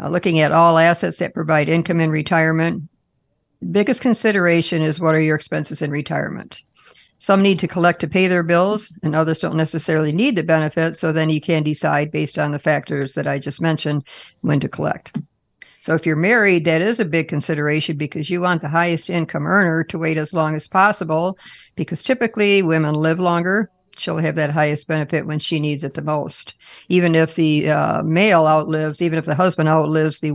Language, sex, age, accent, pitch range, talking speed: English, female, 50-69, American, 155-180 Hz, 200 wpm